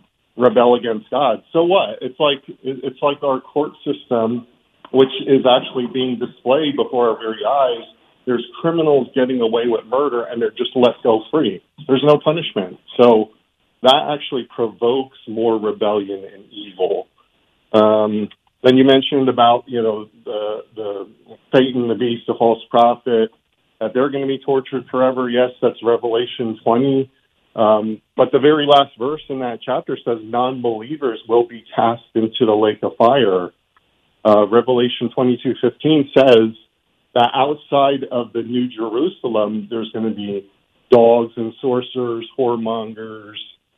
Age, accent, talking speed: 40-59, American, 145 wpm